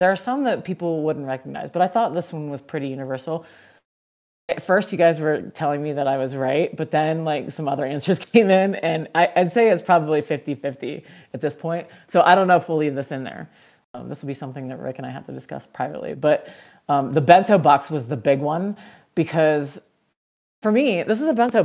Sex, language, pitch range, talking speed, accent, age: female, English, 145-180 Hz, 230 wpm, American, 30-49